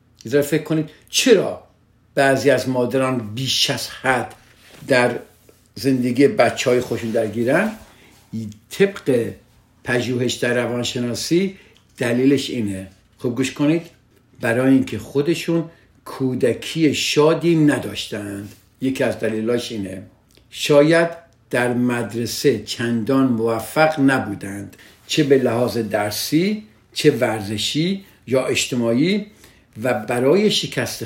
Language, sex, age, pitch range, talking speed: Persian, male, 50-69, 110-145 Hz, 100 wpm